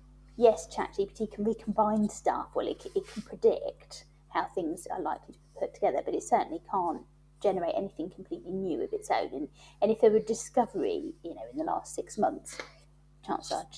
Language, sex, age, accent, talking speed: English, female, 30-49, British, 190 wpm